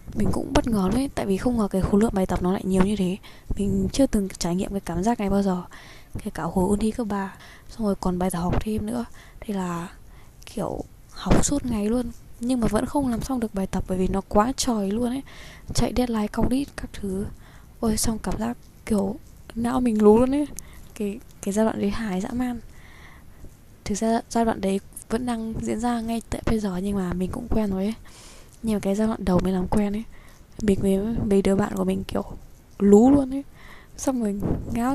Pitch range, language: 190-230 Hz, Vietnamese